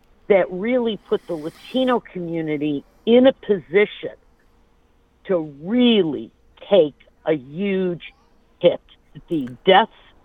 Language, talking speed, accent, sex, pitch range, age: English, 100 wpm, American, female, 155-200 Hz, 50-69